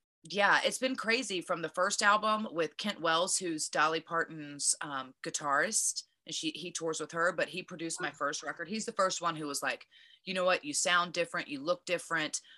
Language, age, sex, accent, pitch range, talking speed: English, 30-49, female, American, 165-210 Hz, 210 wpm